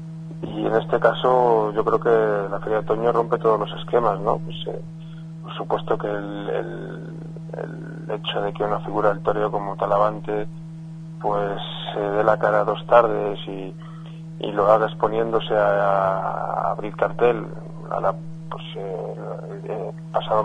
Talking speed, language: 170 wpm, Spanish